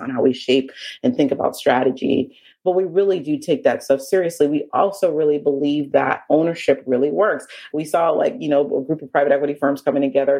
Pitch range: 140-180 Hz